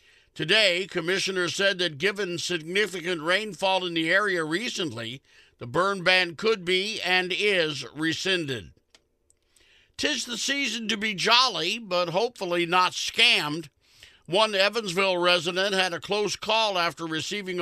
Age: 50-69